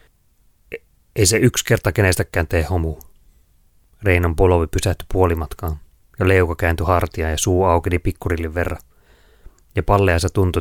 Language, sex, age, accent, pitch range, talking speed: Finnish, male, 30-49, native, 80-95 Hz, 130 wpm